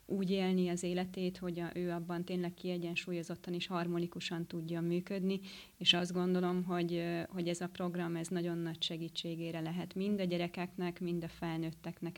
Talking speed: 160 wpm